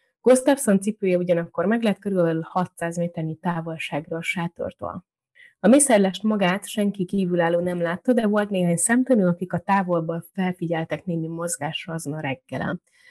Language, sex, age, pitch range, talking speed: Hungarian, female, 20-39, 170-210 Hz, 140 wpm